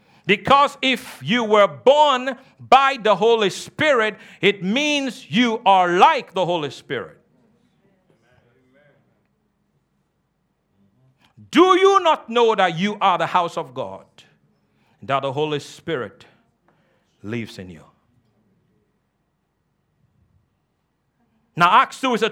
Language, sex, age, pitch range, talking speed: English, male, 50-69, 160-230 Hz, 110 wpm